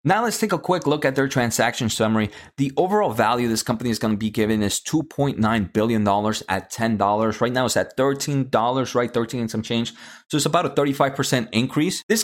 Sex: male